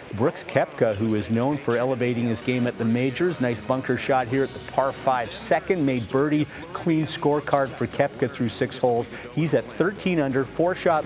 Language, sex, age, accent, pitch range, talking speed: English, male, 50-69, American, 110-135 Hz, 195 wpm